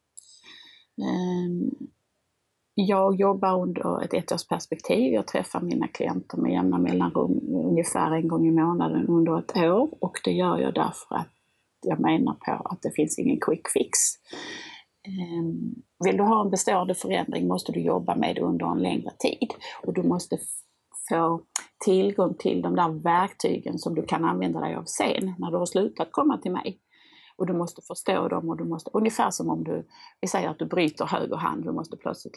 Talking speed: 180 wpm